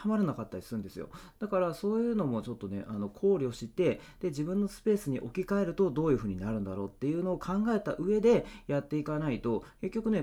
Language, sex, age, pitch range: Japanese, male, 30-49, 110-180 Hz